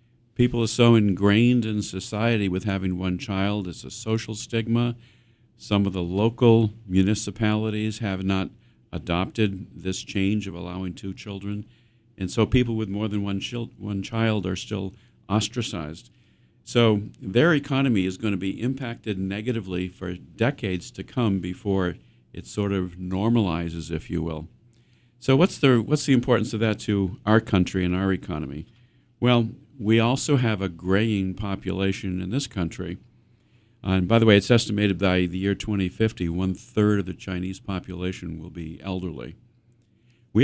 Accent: American